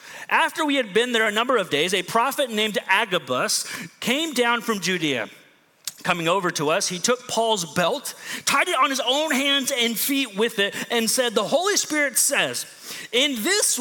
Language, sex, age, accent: English, male, 30-49, American